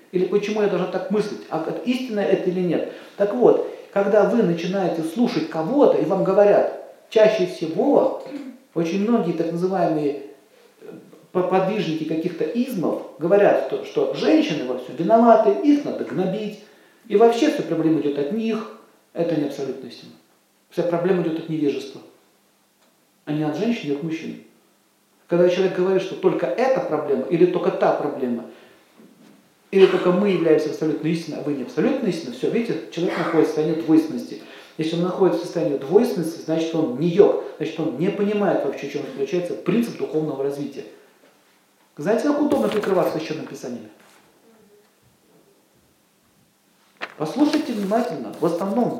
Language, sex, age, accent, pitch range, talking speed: Russian, male, 40-59, native, 160-225 Hz, 150 wpm